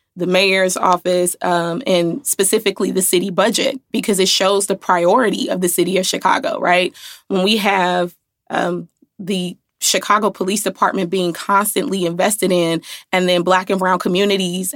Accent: American